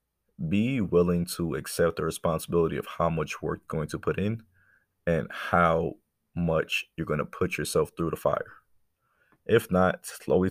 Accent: American